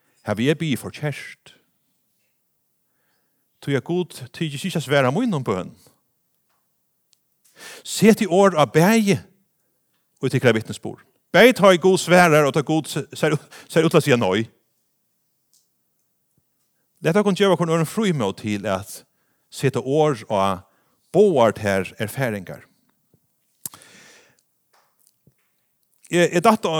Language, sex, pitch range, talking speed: English, male, 110-165 Hz, 105 wpm